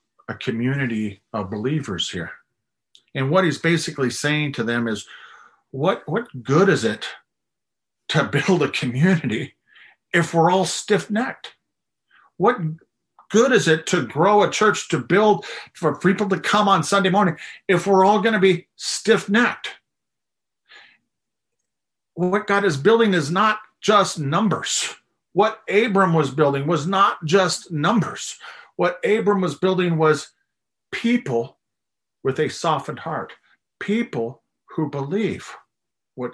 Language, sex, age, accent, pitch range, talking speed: English, male, 50-69, American, 140-200 Hz, 135 wpm